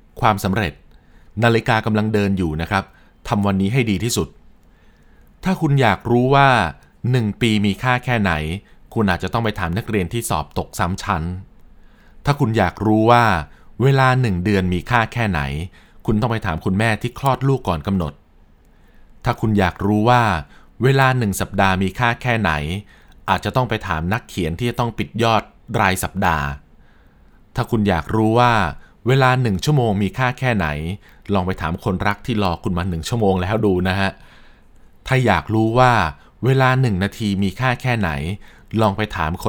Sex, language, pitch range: male, Thai, 90-115 Hz